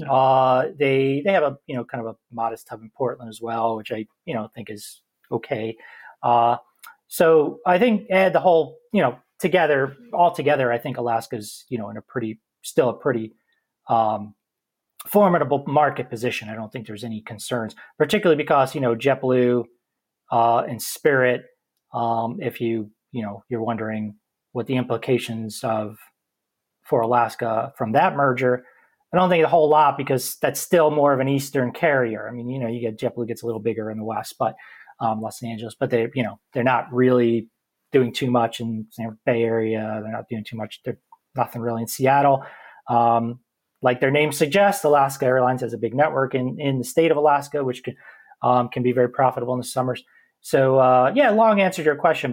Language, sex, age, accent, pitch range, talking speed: English, male, 30-49, American, 115-145 Hz, 195 wpm